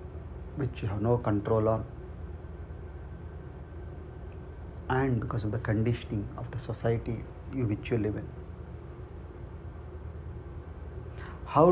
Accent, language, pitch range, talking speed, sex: Indian, English, 90-120 Hz, 95 wpm, male